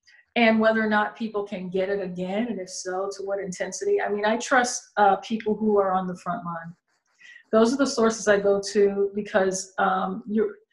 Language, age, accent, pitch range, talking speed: English, 40-59, American, 185-215 Hz, 205 wpm